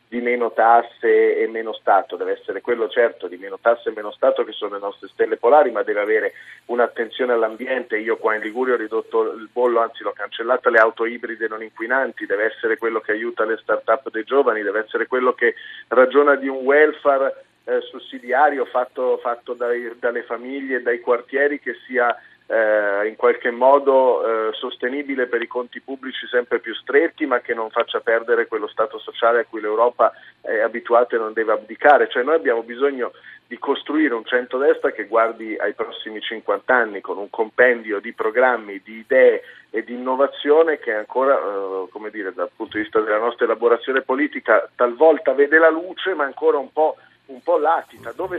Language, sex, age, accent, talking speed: Italian, male, 40-59, native, 190 wpm